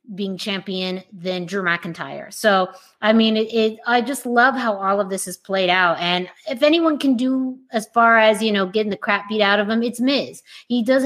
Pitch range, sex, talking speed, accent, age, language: 175-215 Hz, female, 220 wpm, American, 20-39, English